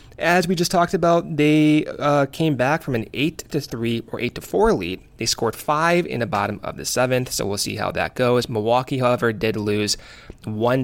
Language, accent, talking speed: English, American, 205 wpm